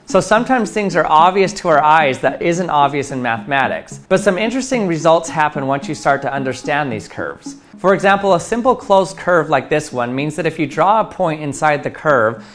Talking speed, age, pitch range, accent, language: 210 wpm, 30-49, 140-190 Hz, American, English